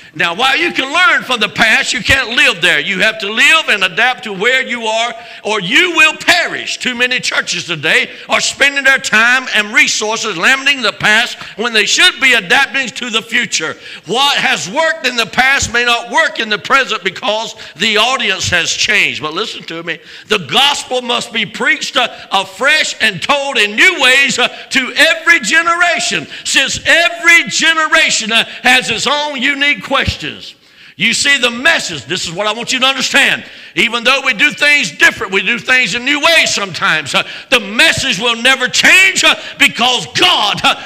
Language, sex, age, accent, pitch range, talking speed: English, male, 60-79, American, 220-295 Hz, 185 wpm